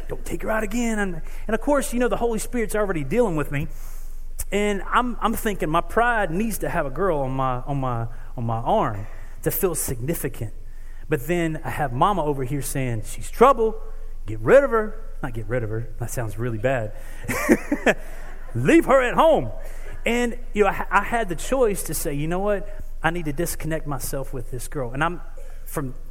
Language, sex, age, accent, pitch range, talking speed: English, male, 30-49, American, 125-185 Hz, 205 wpm